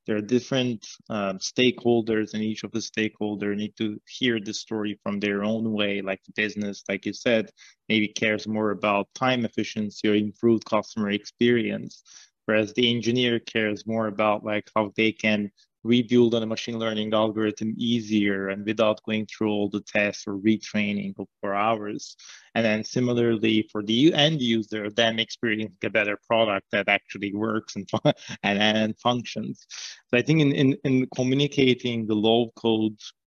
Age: 20-39